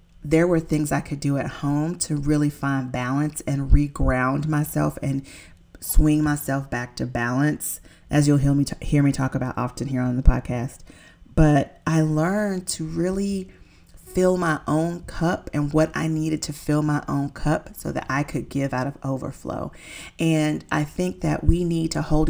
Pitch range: 130-155 Hz